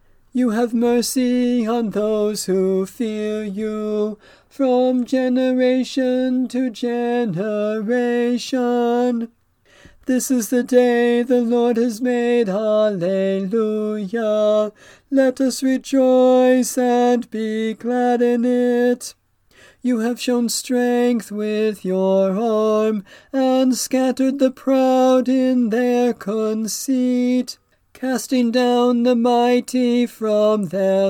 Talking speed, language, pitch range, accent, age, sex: 95 wpm, English, 215-255 Hz, American, 40-59, male